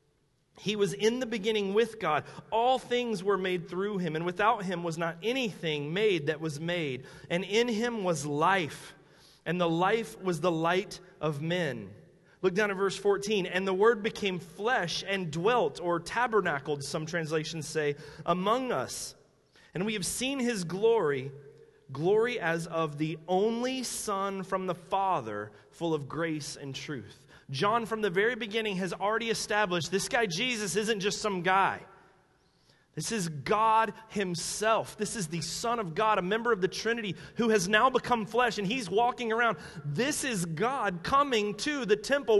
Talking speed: 170 wpm